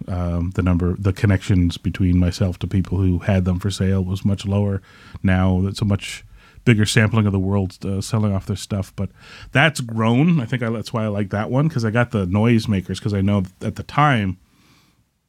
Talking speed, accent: 210 wpm, American